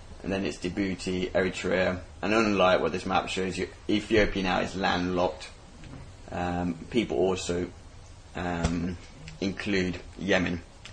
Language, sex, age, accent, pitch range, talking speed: English, male, 20-39, British, 80-100 Hz, 120 wpm